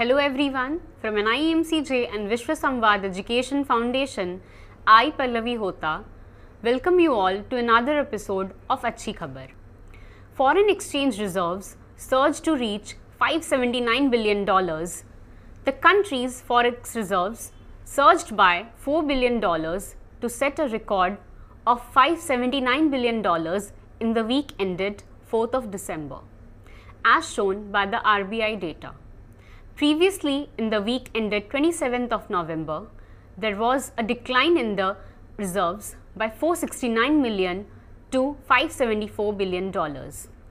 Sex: female